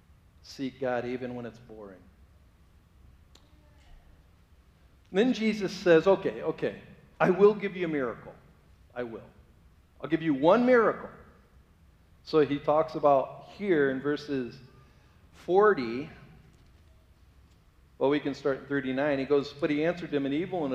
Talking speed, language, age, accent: 135 wpm, English, 40-59, American